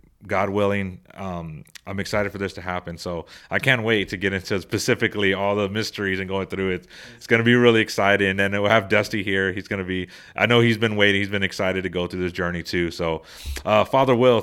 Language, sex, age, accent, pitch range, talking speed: English, male, 30-49, American, 95-115 Hz, 245 wpm